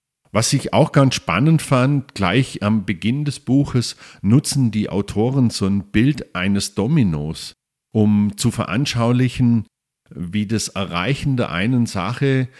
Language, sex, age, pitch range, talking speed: German, male, 50-69, 100-125 Hz, 135 wpm